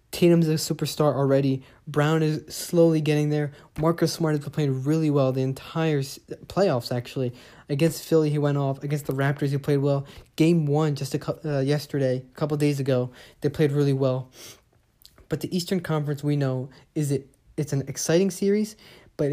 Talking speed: 185 wpm